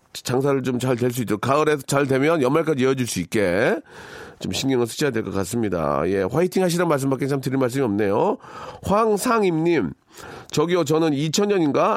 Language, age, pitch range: Korean, 40-59, 110-160 Hz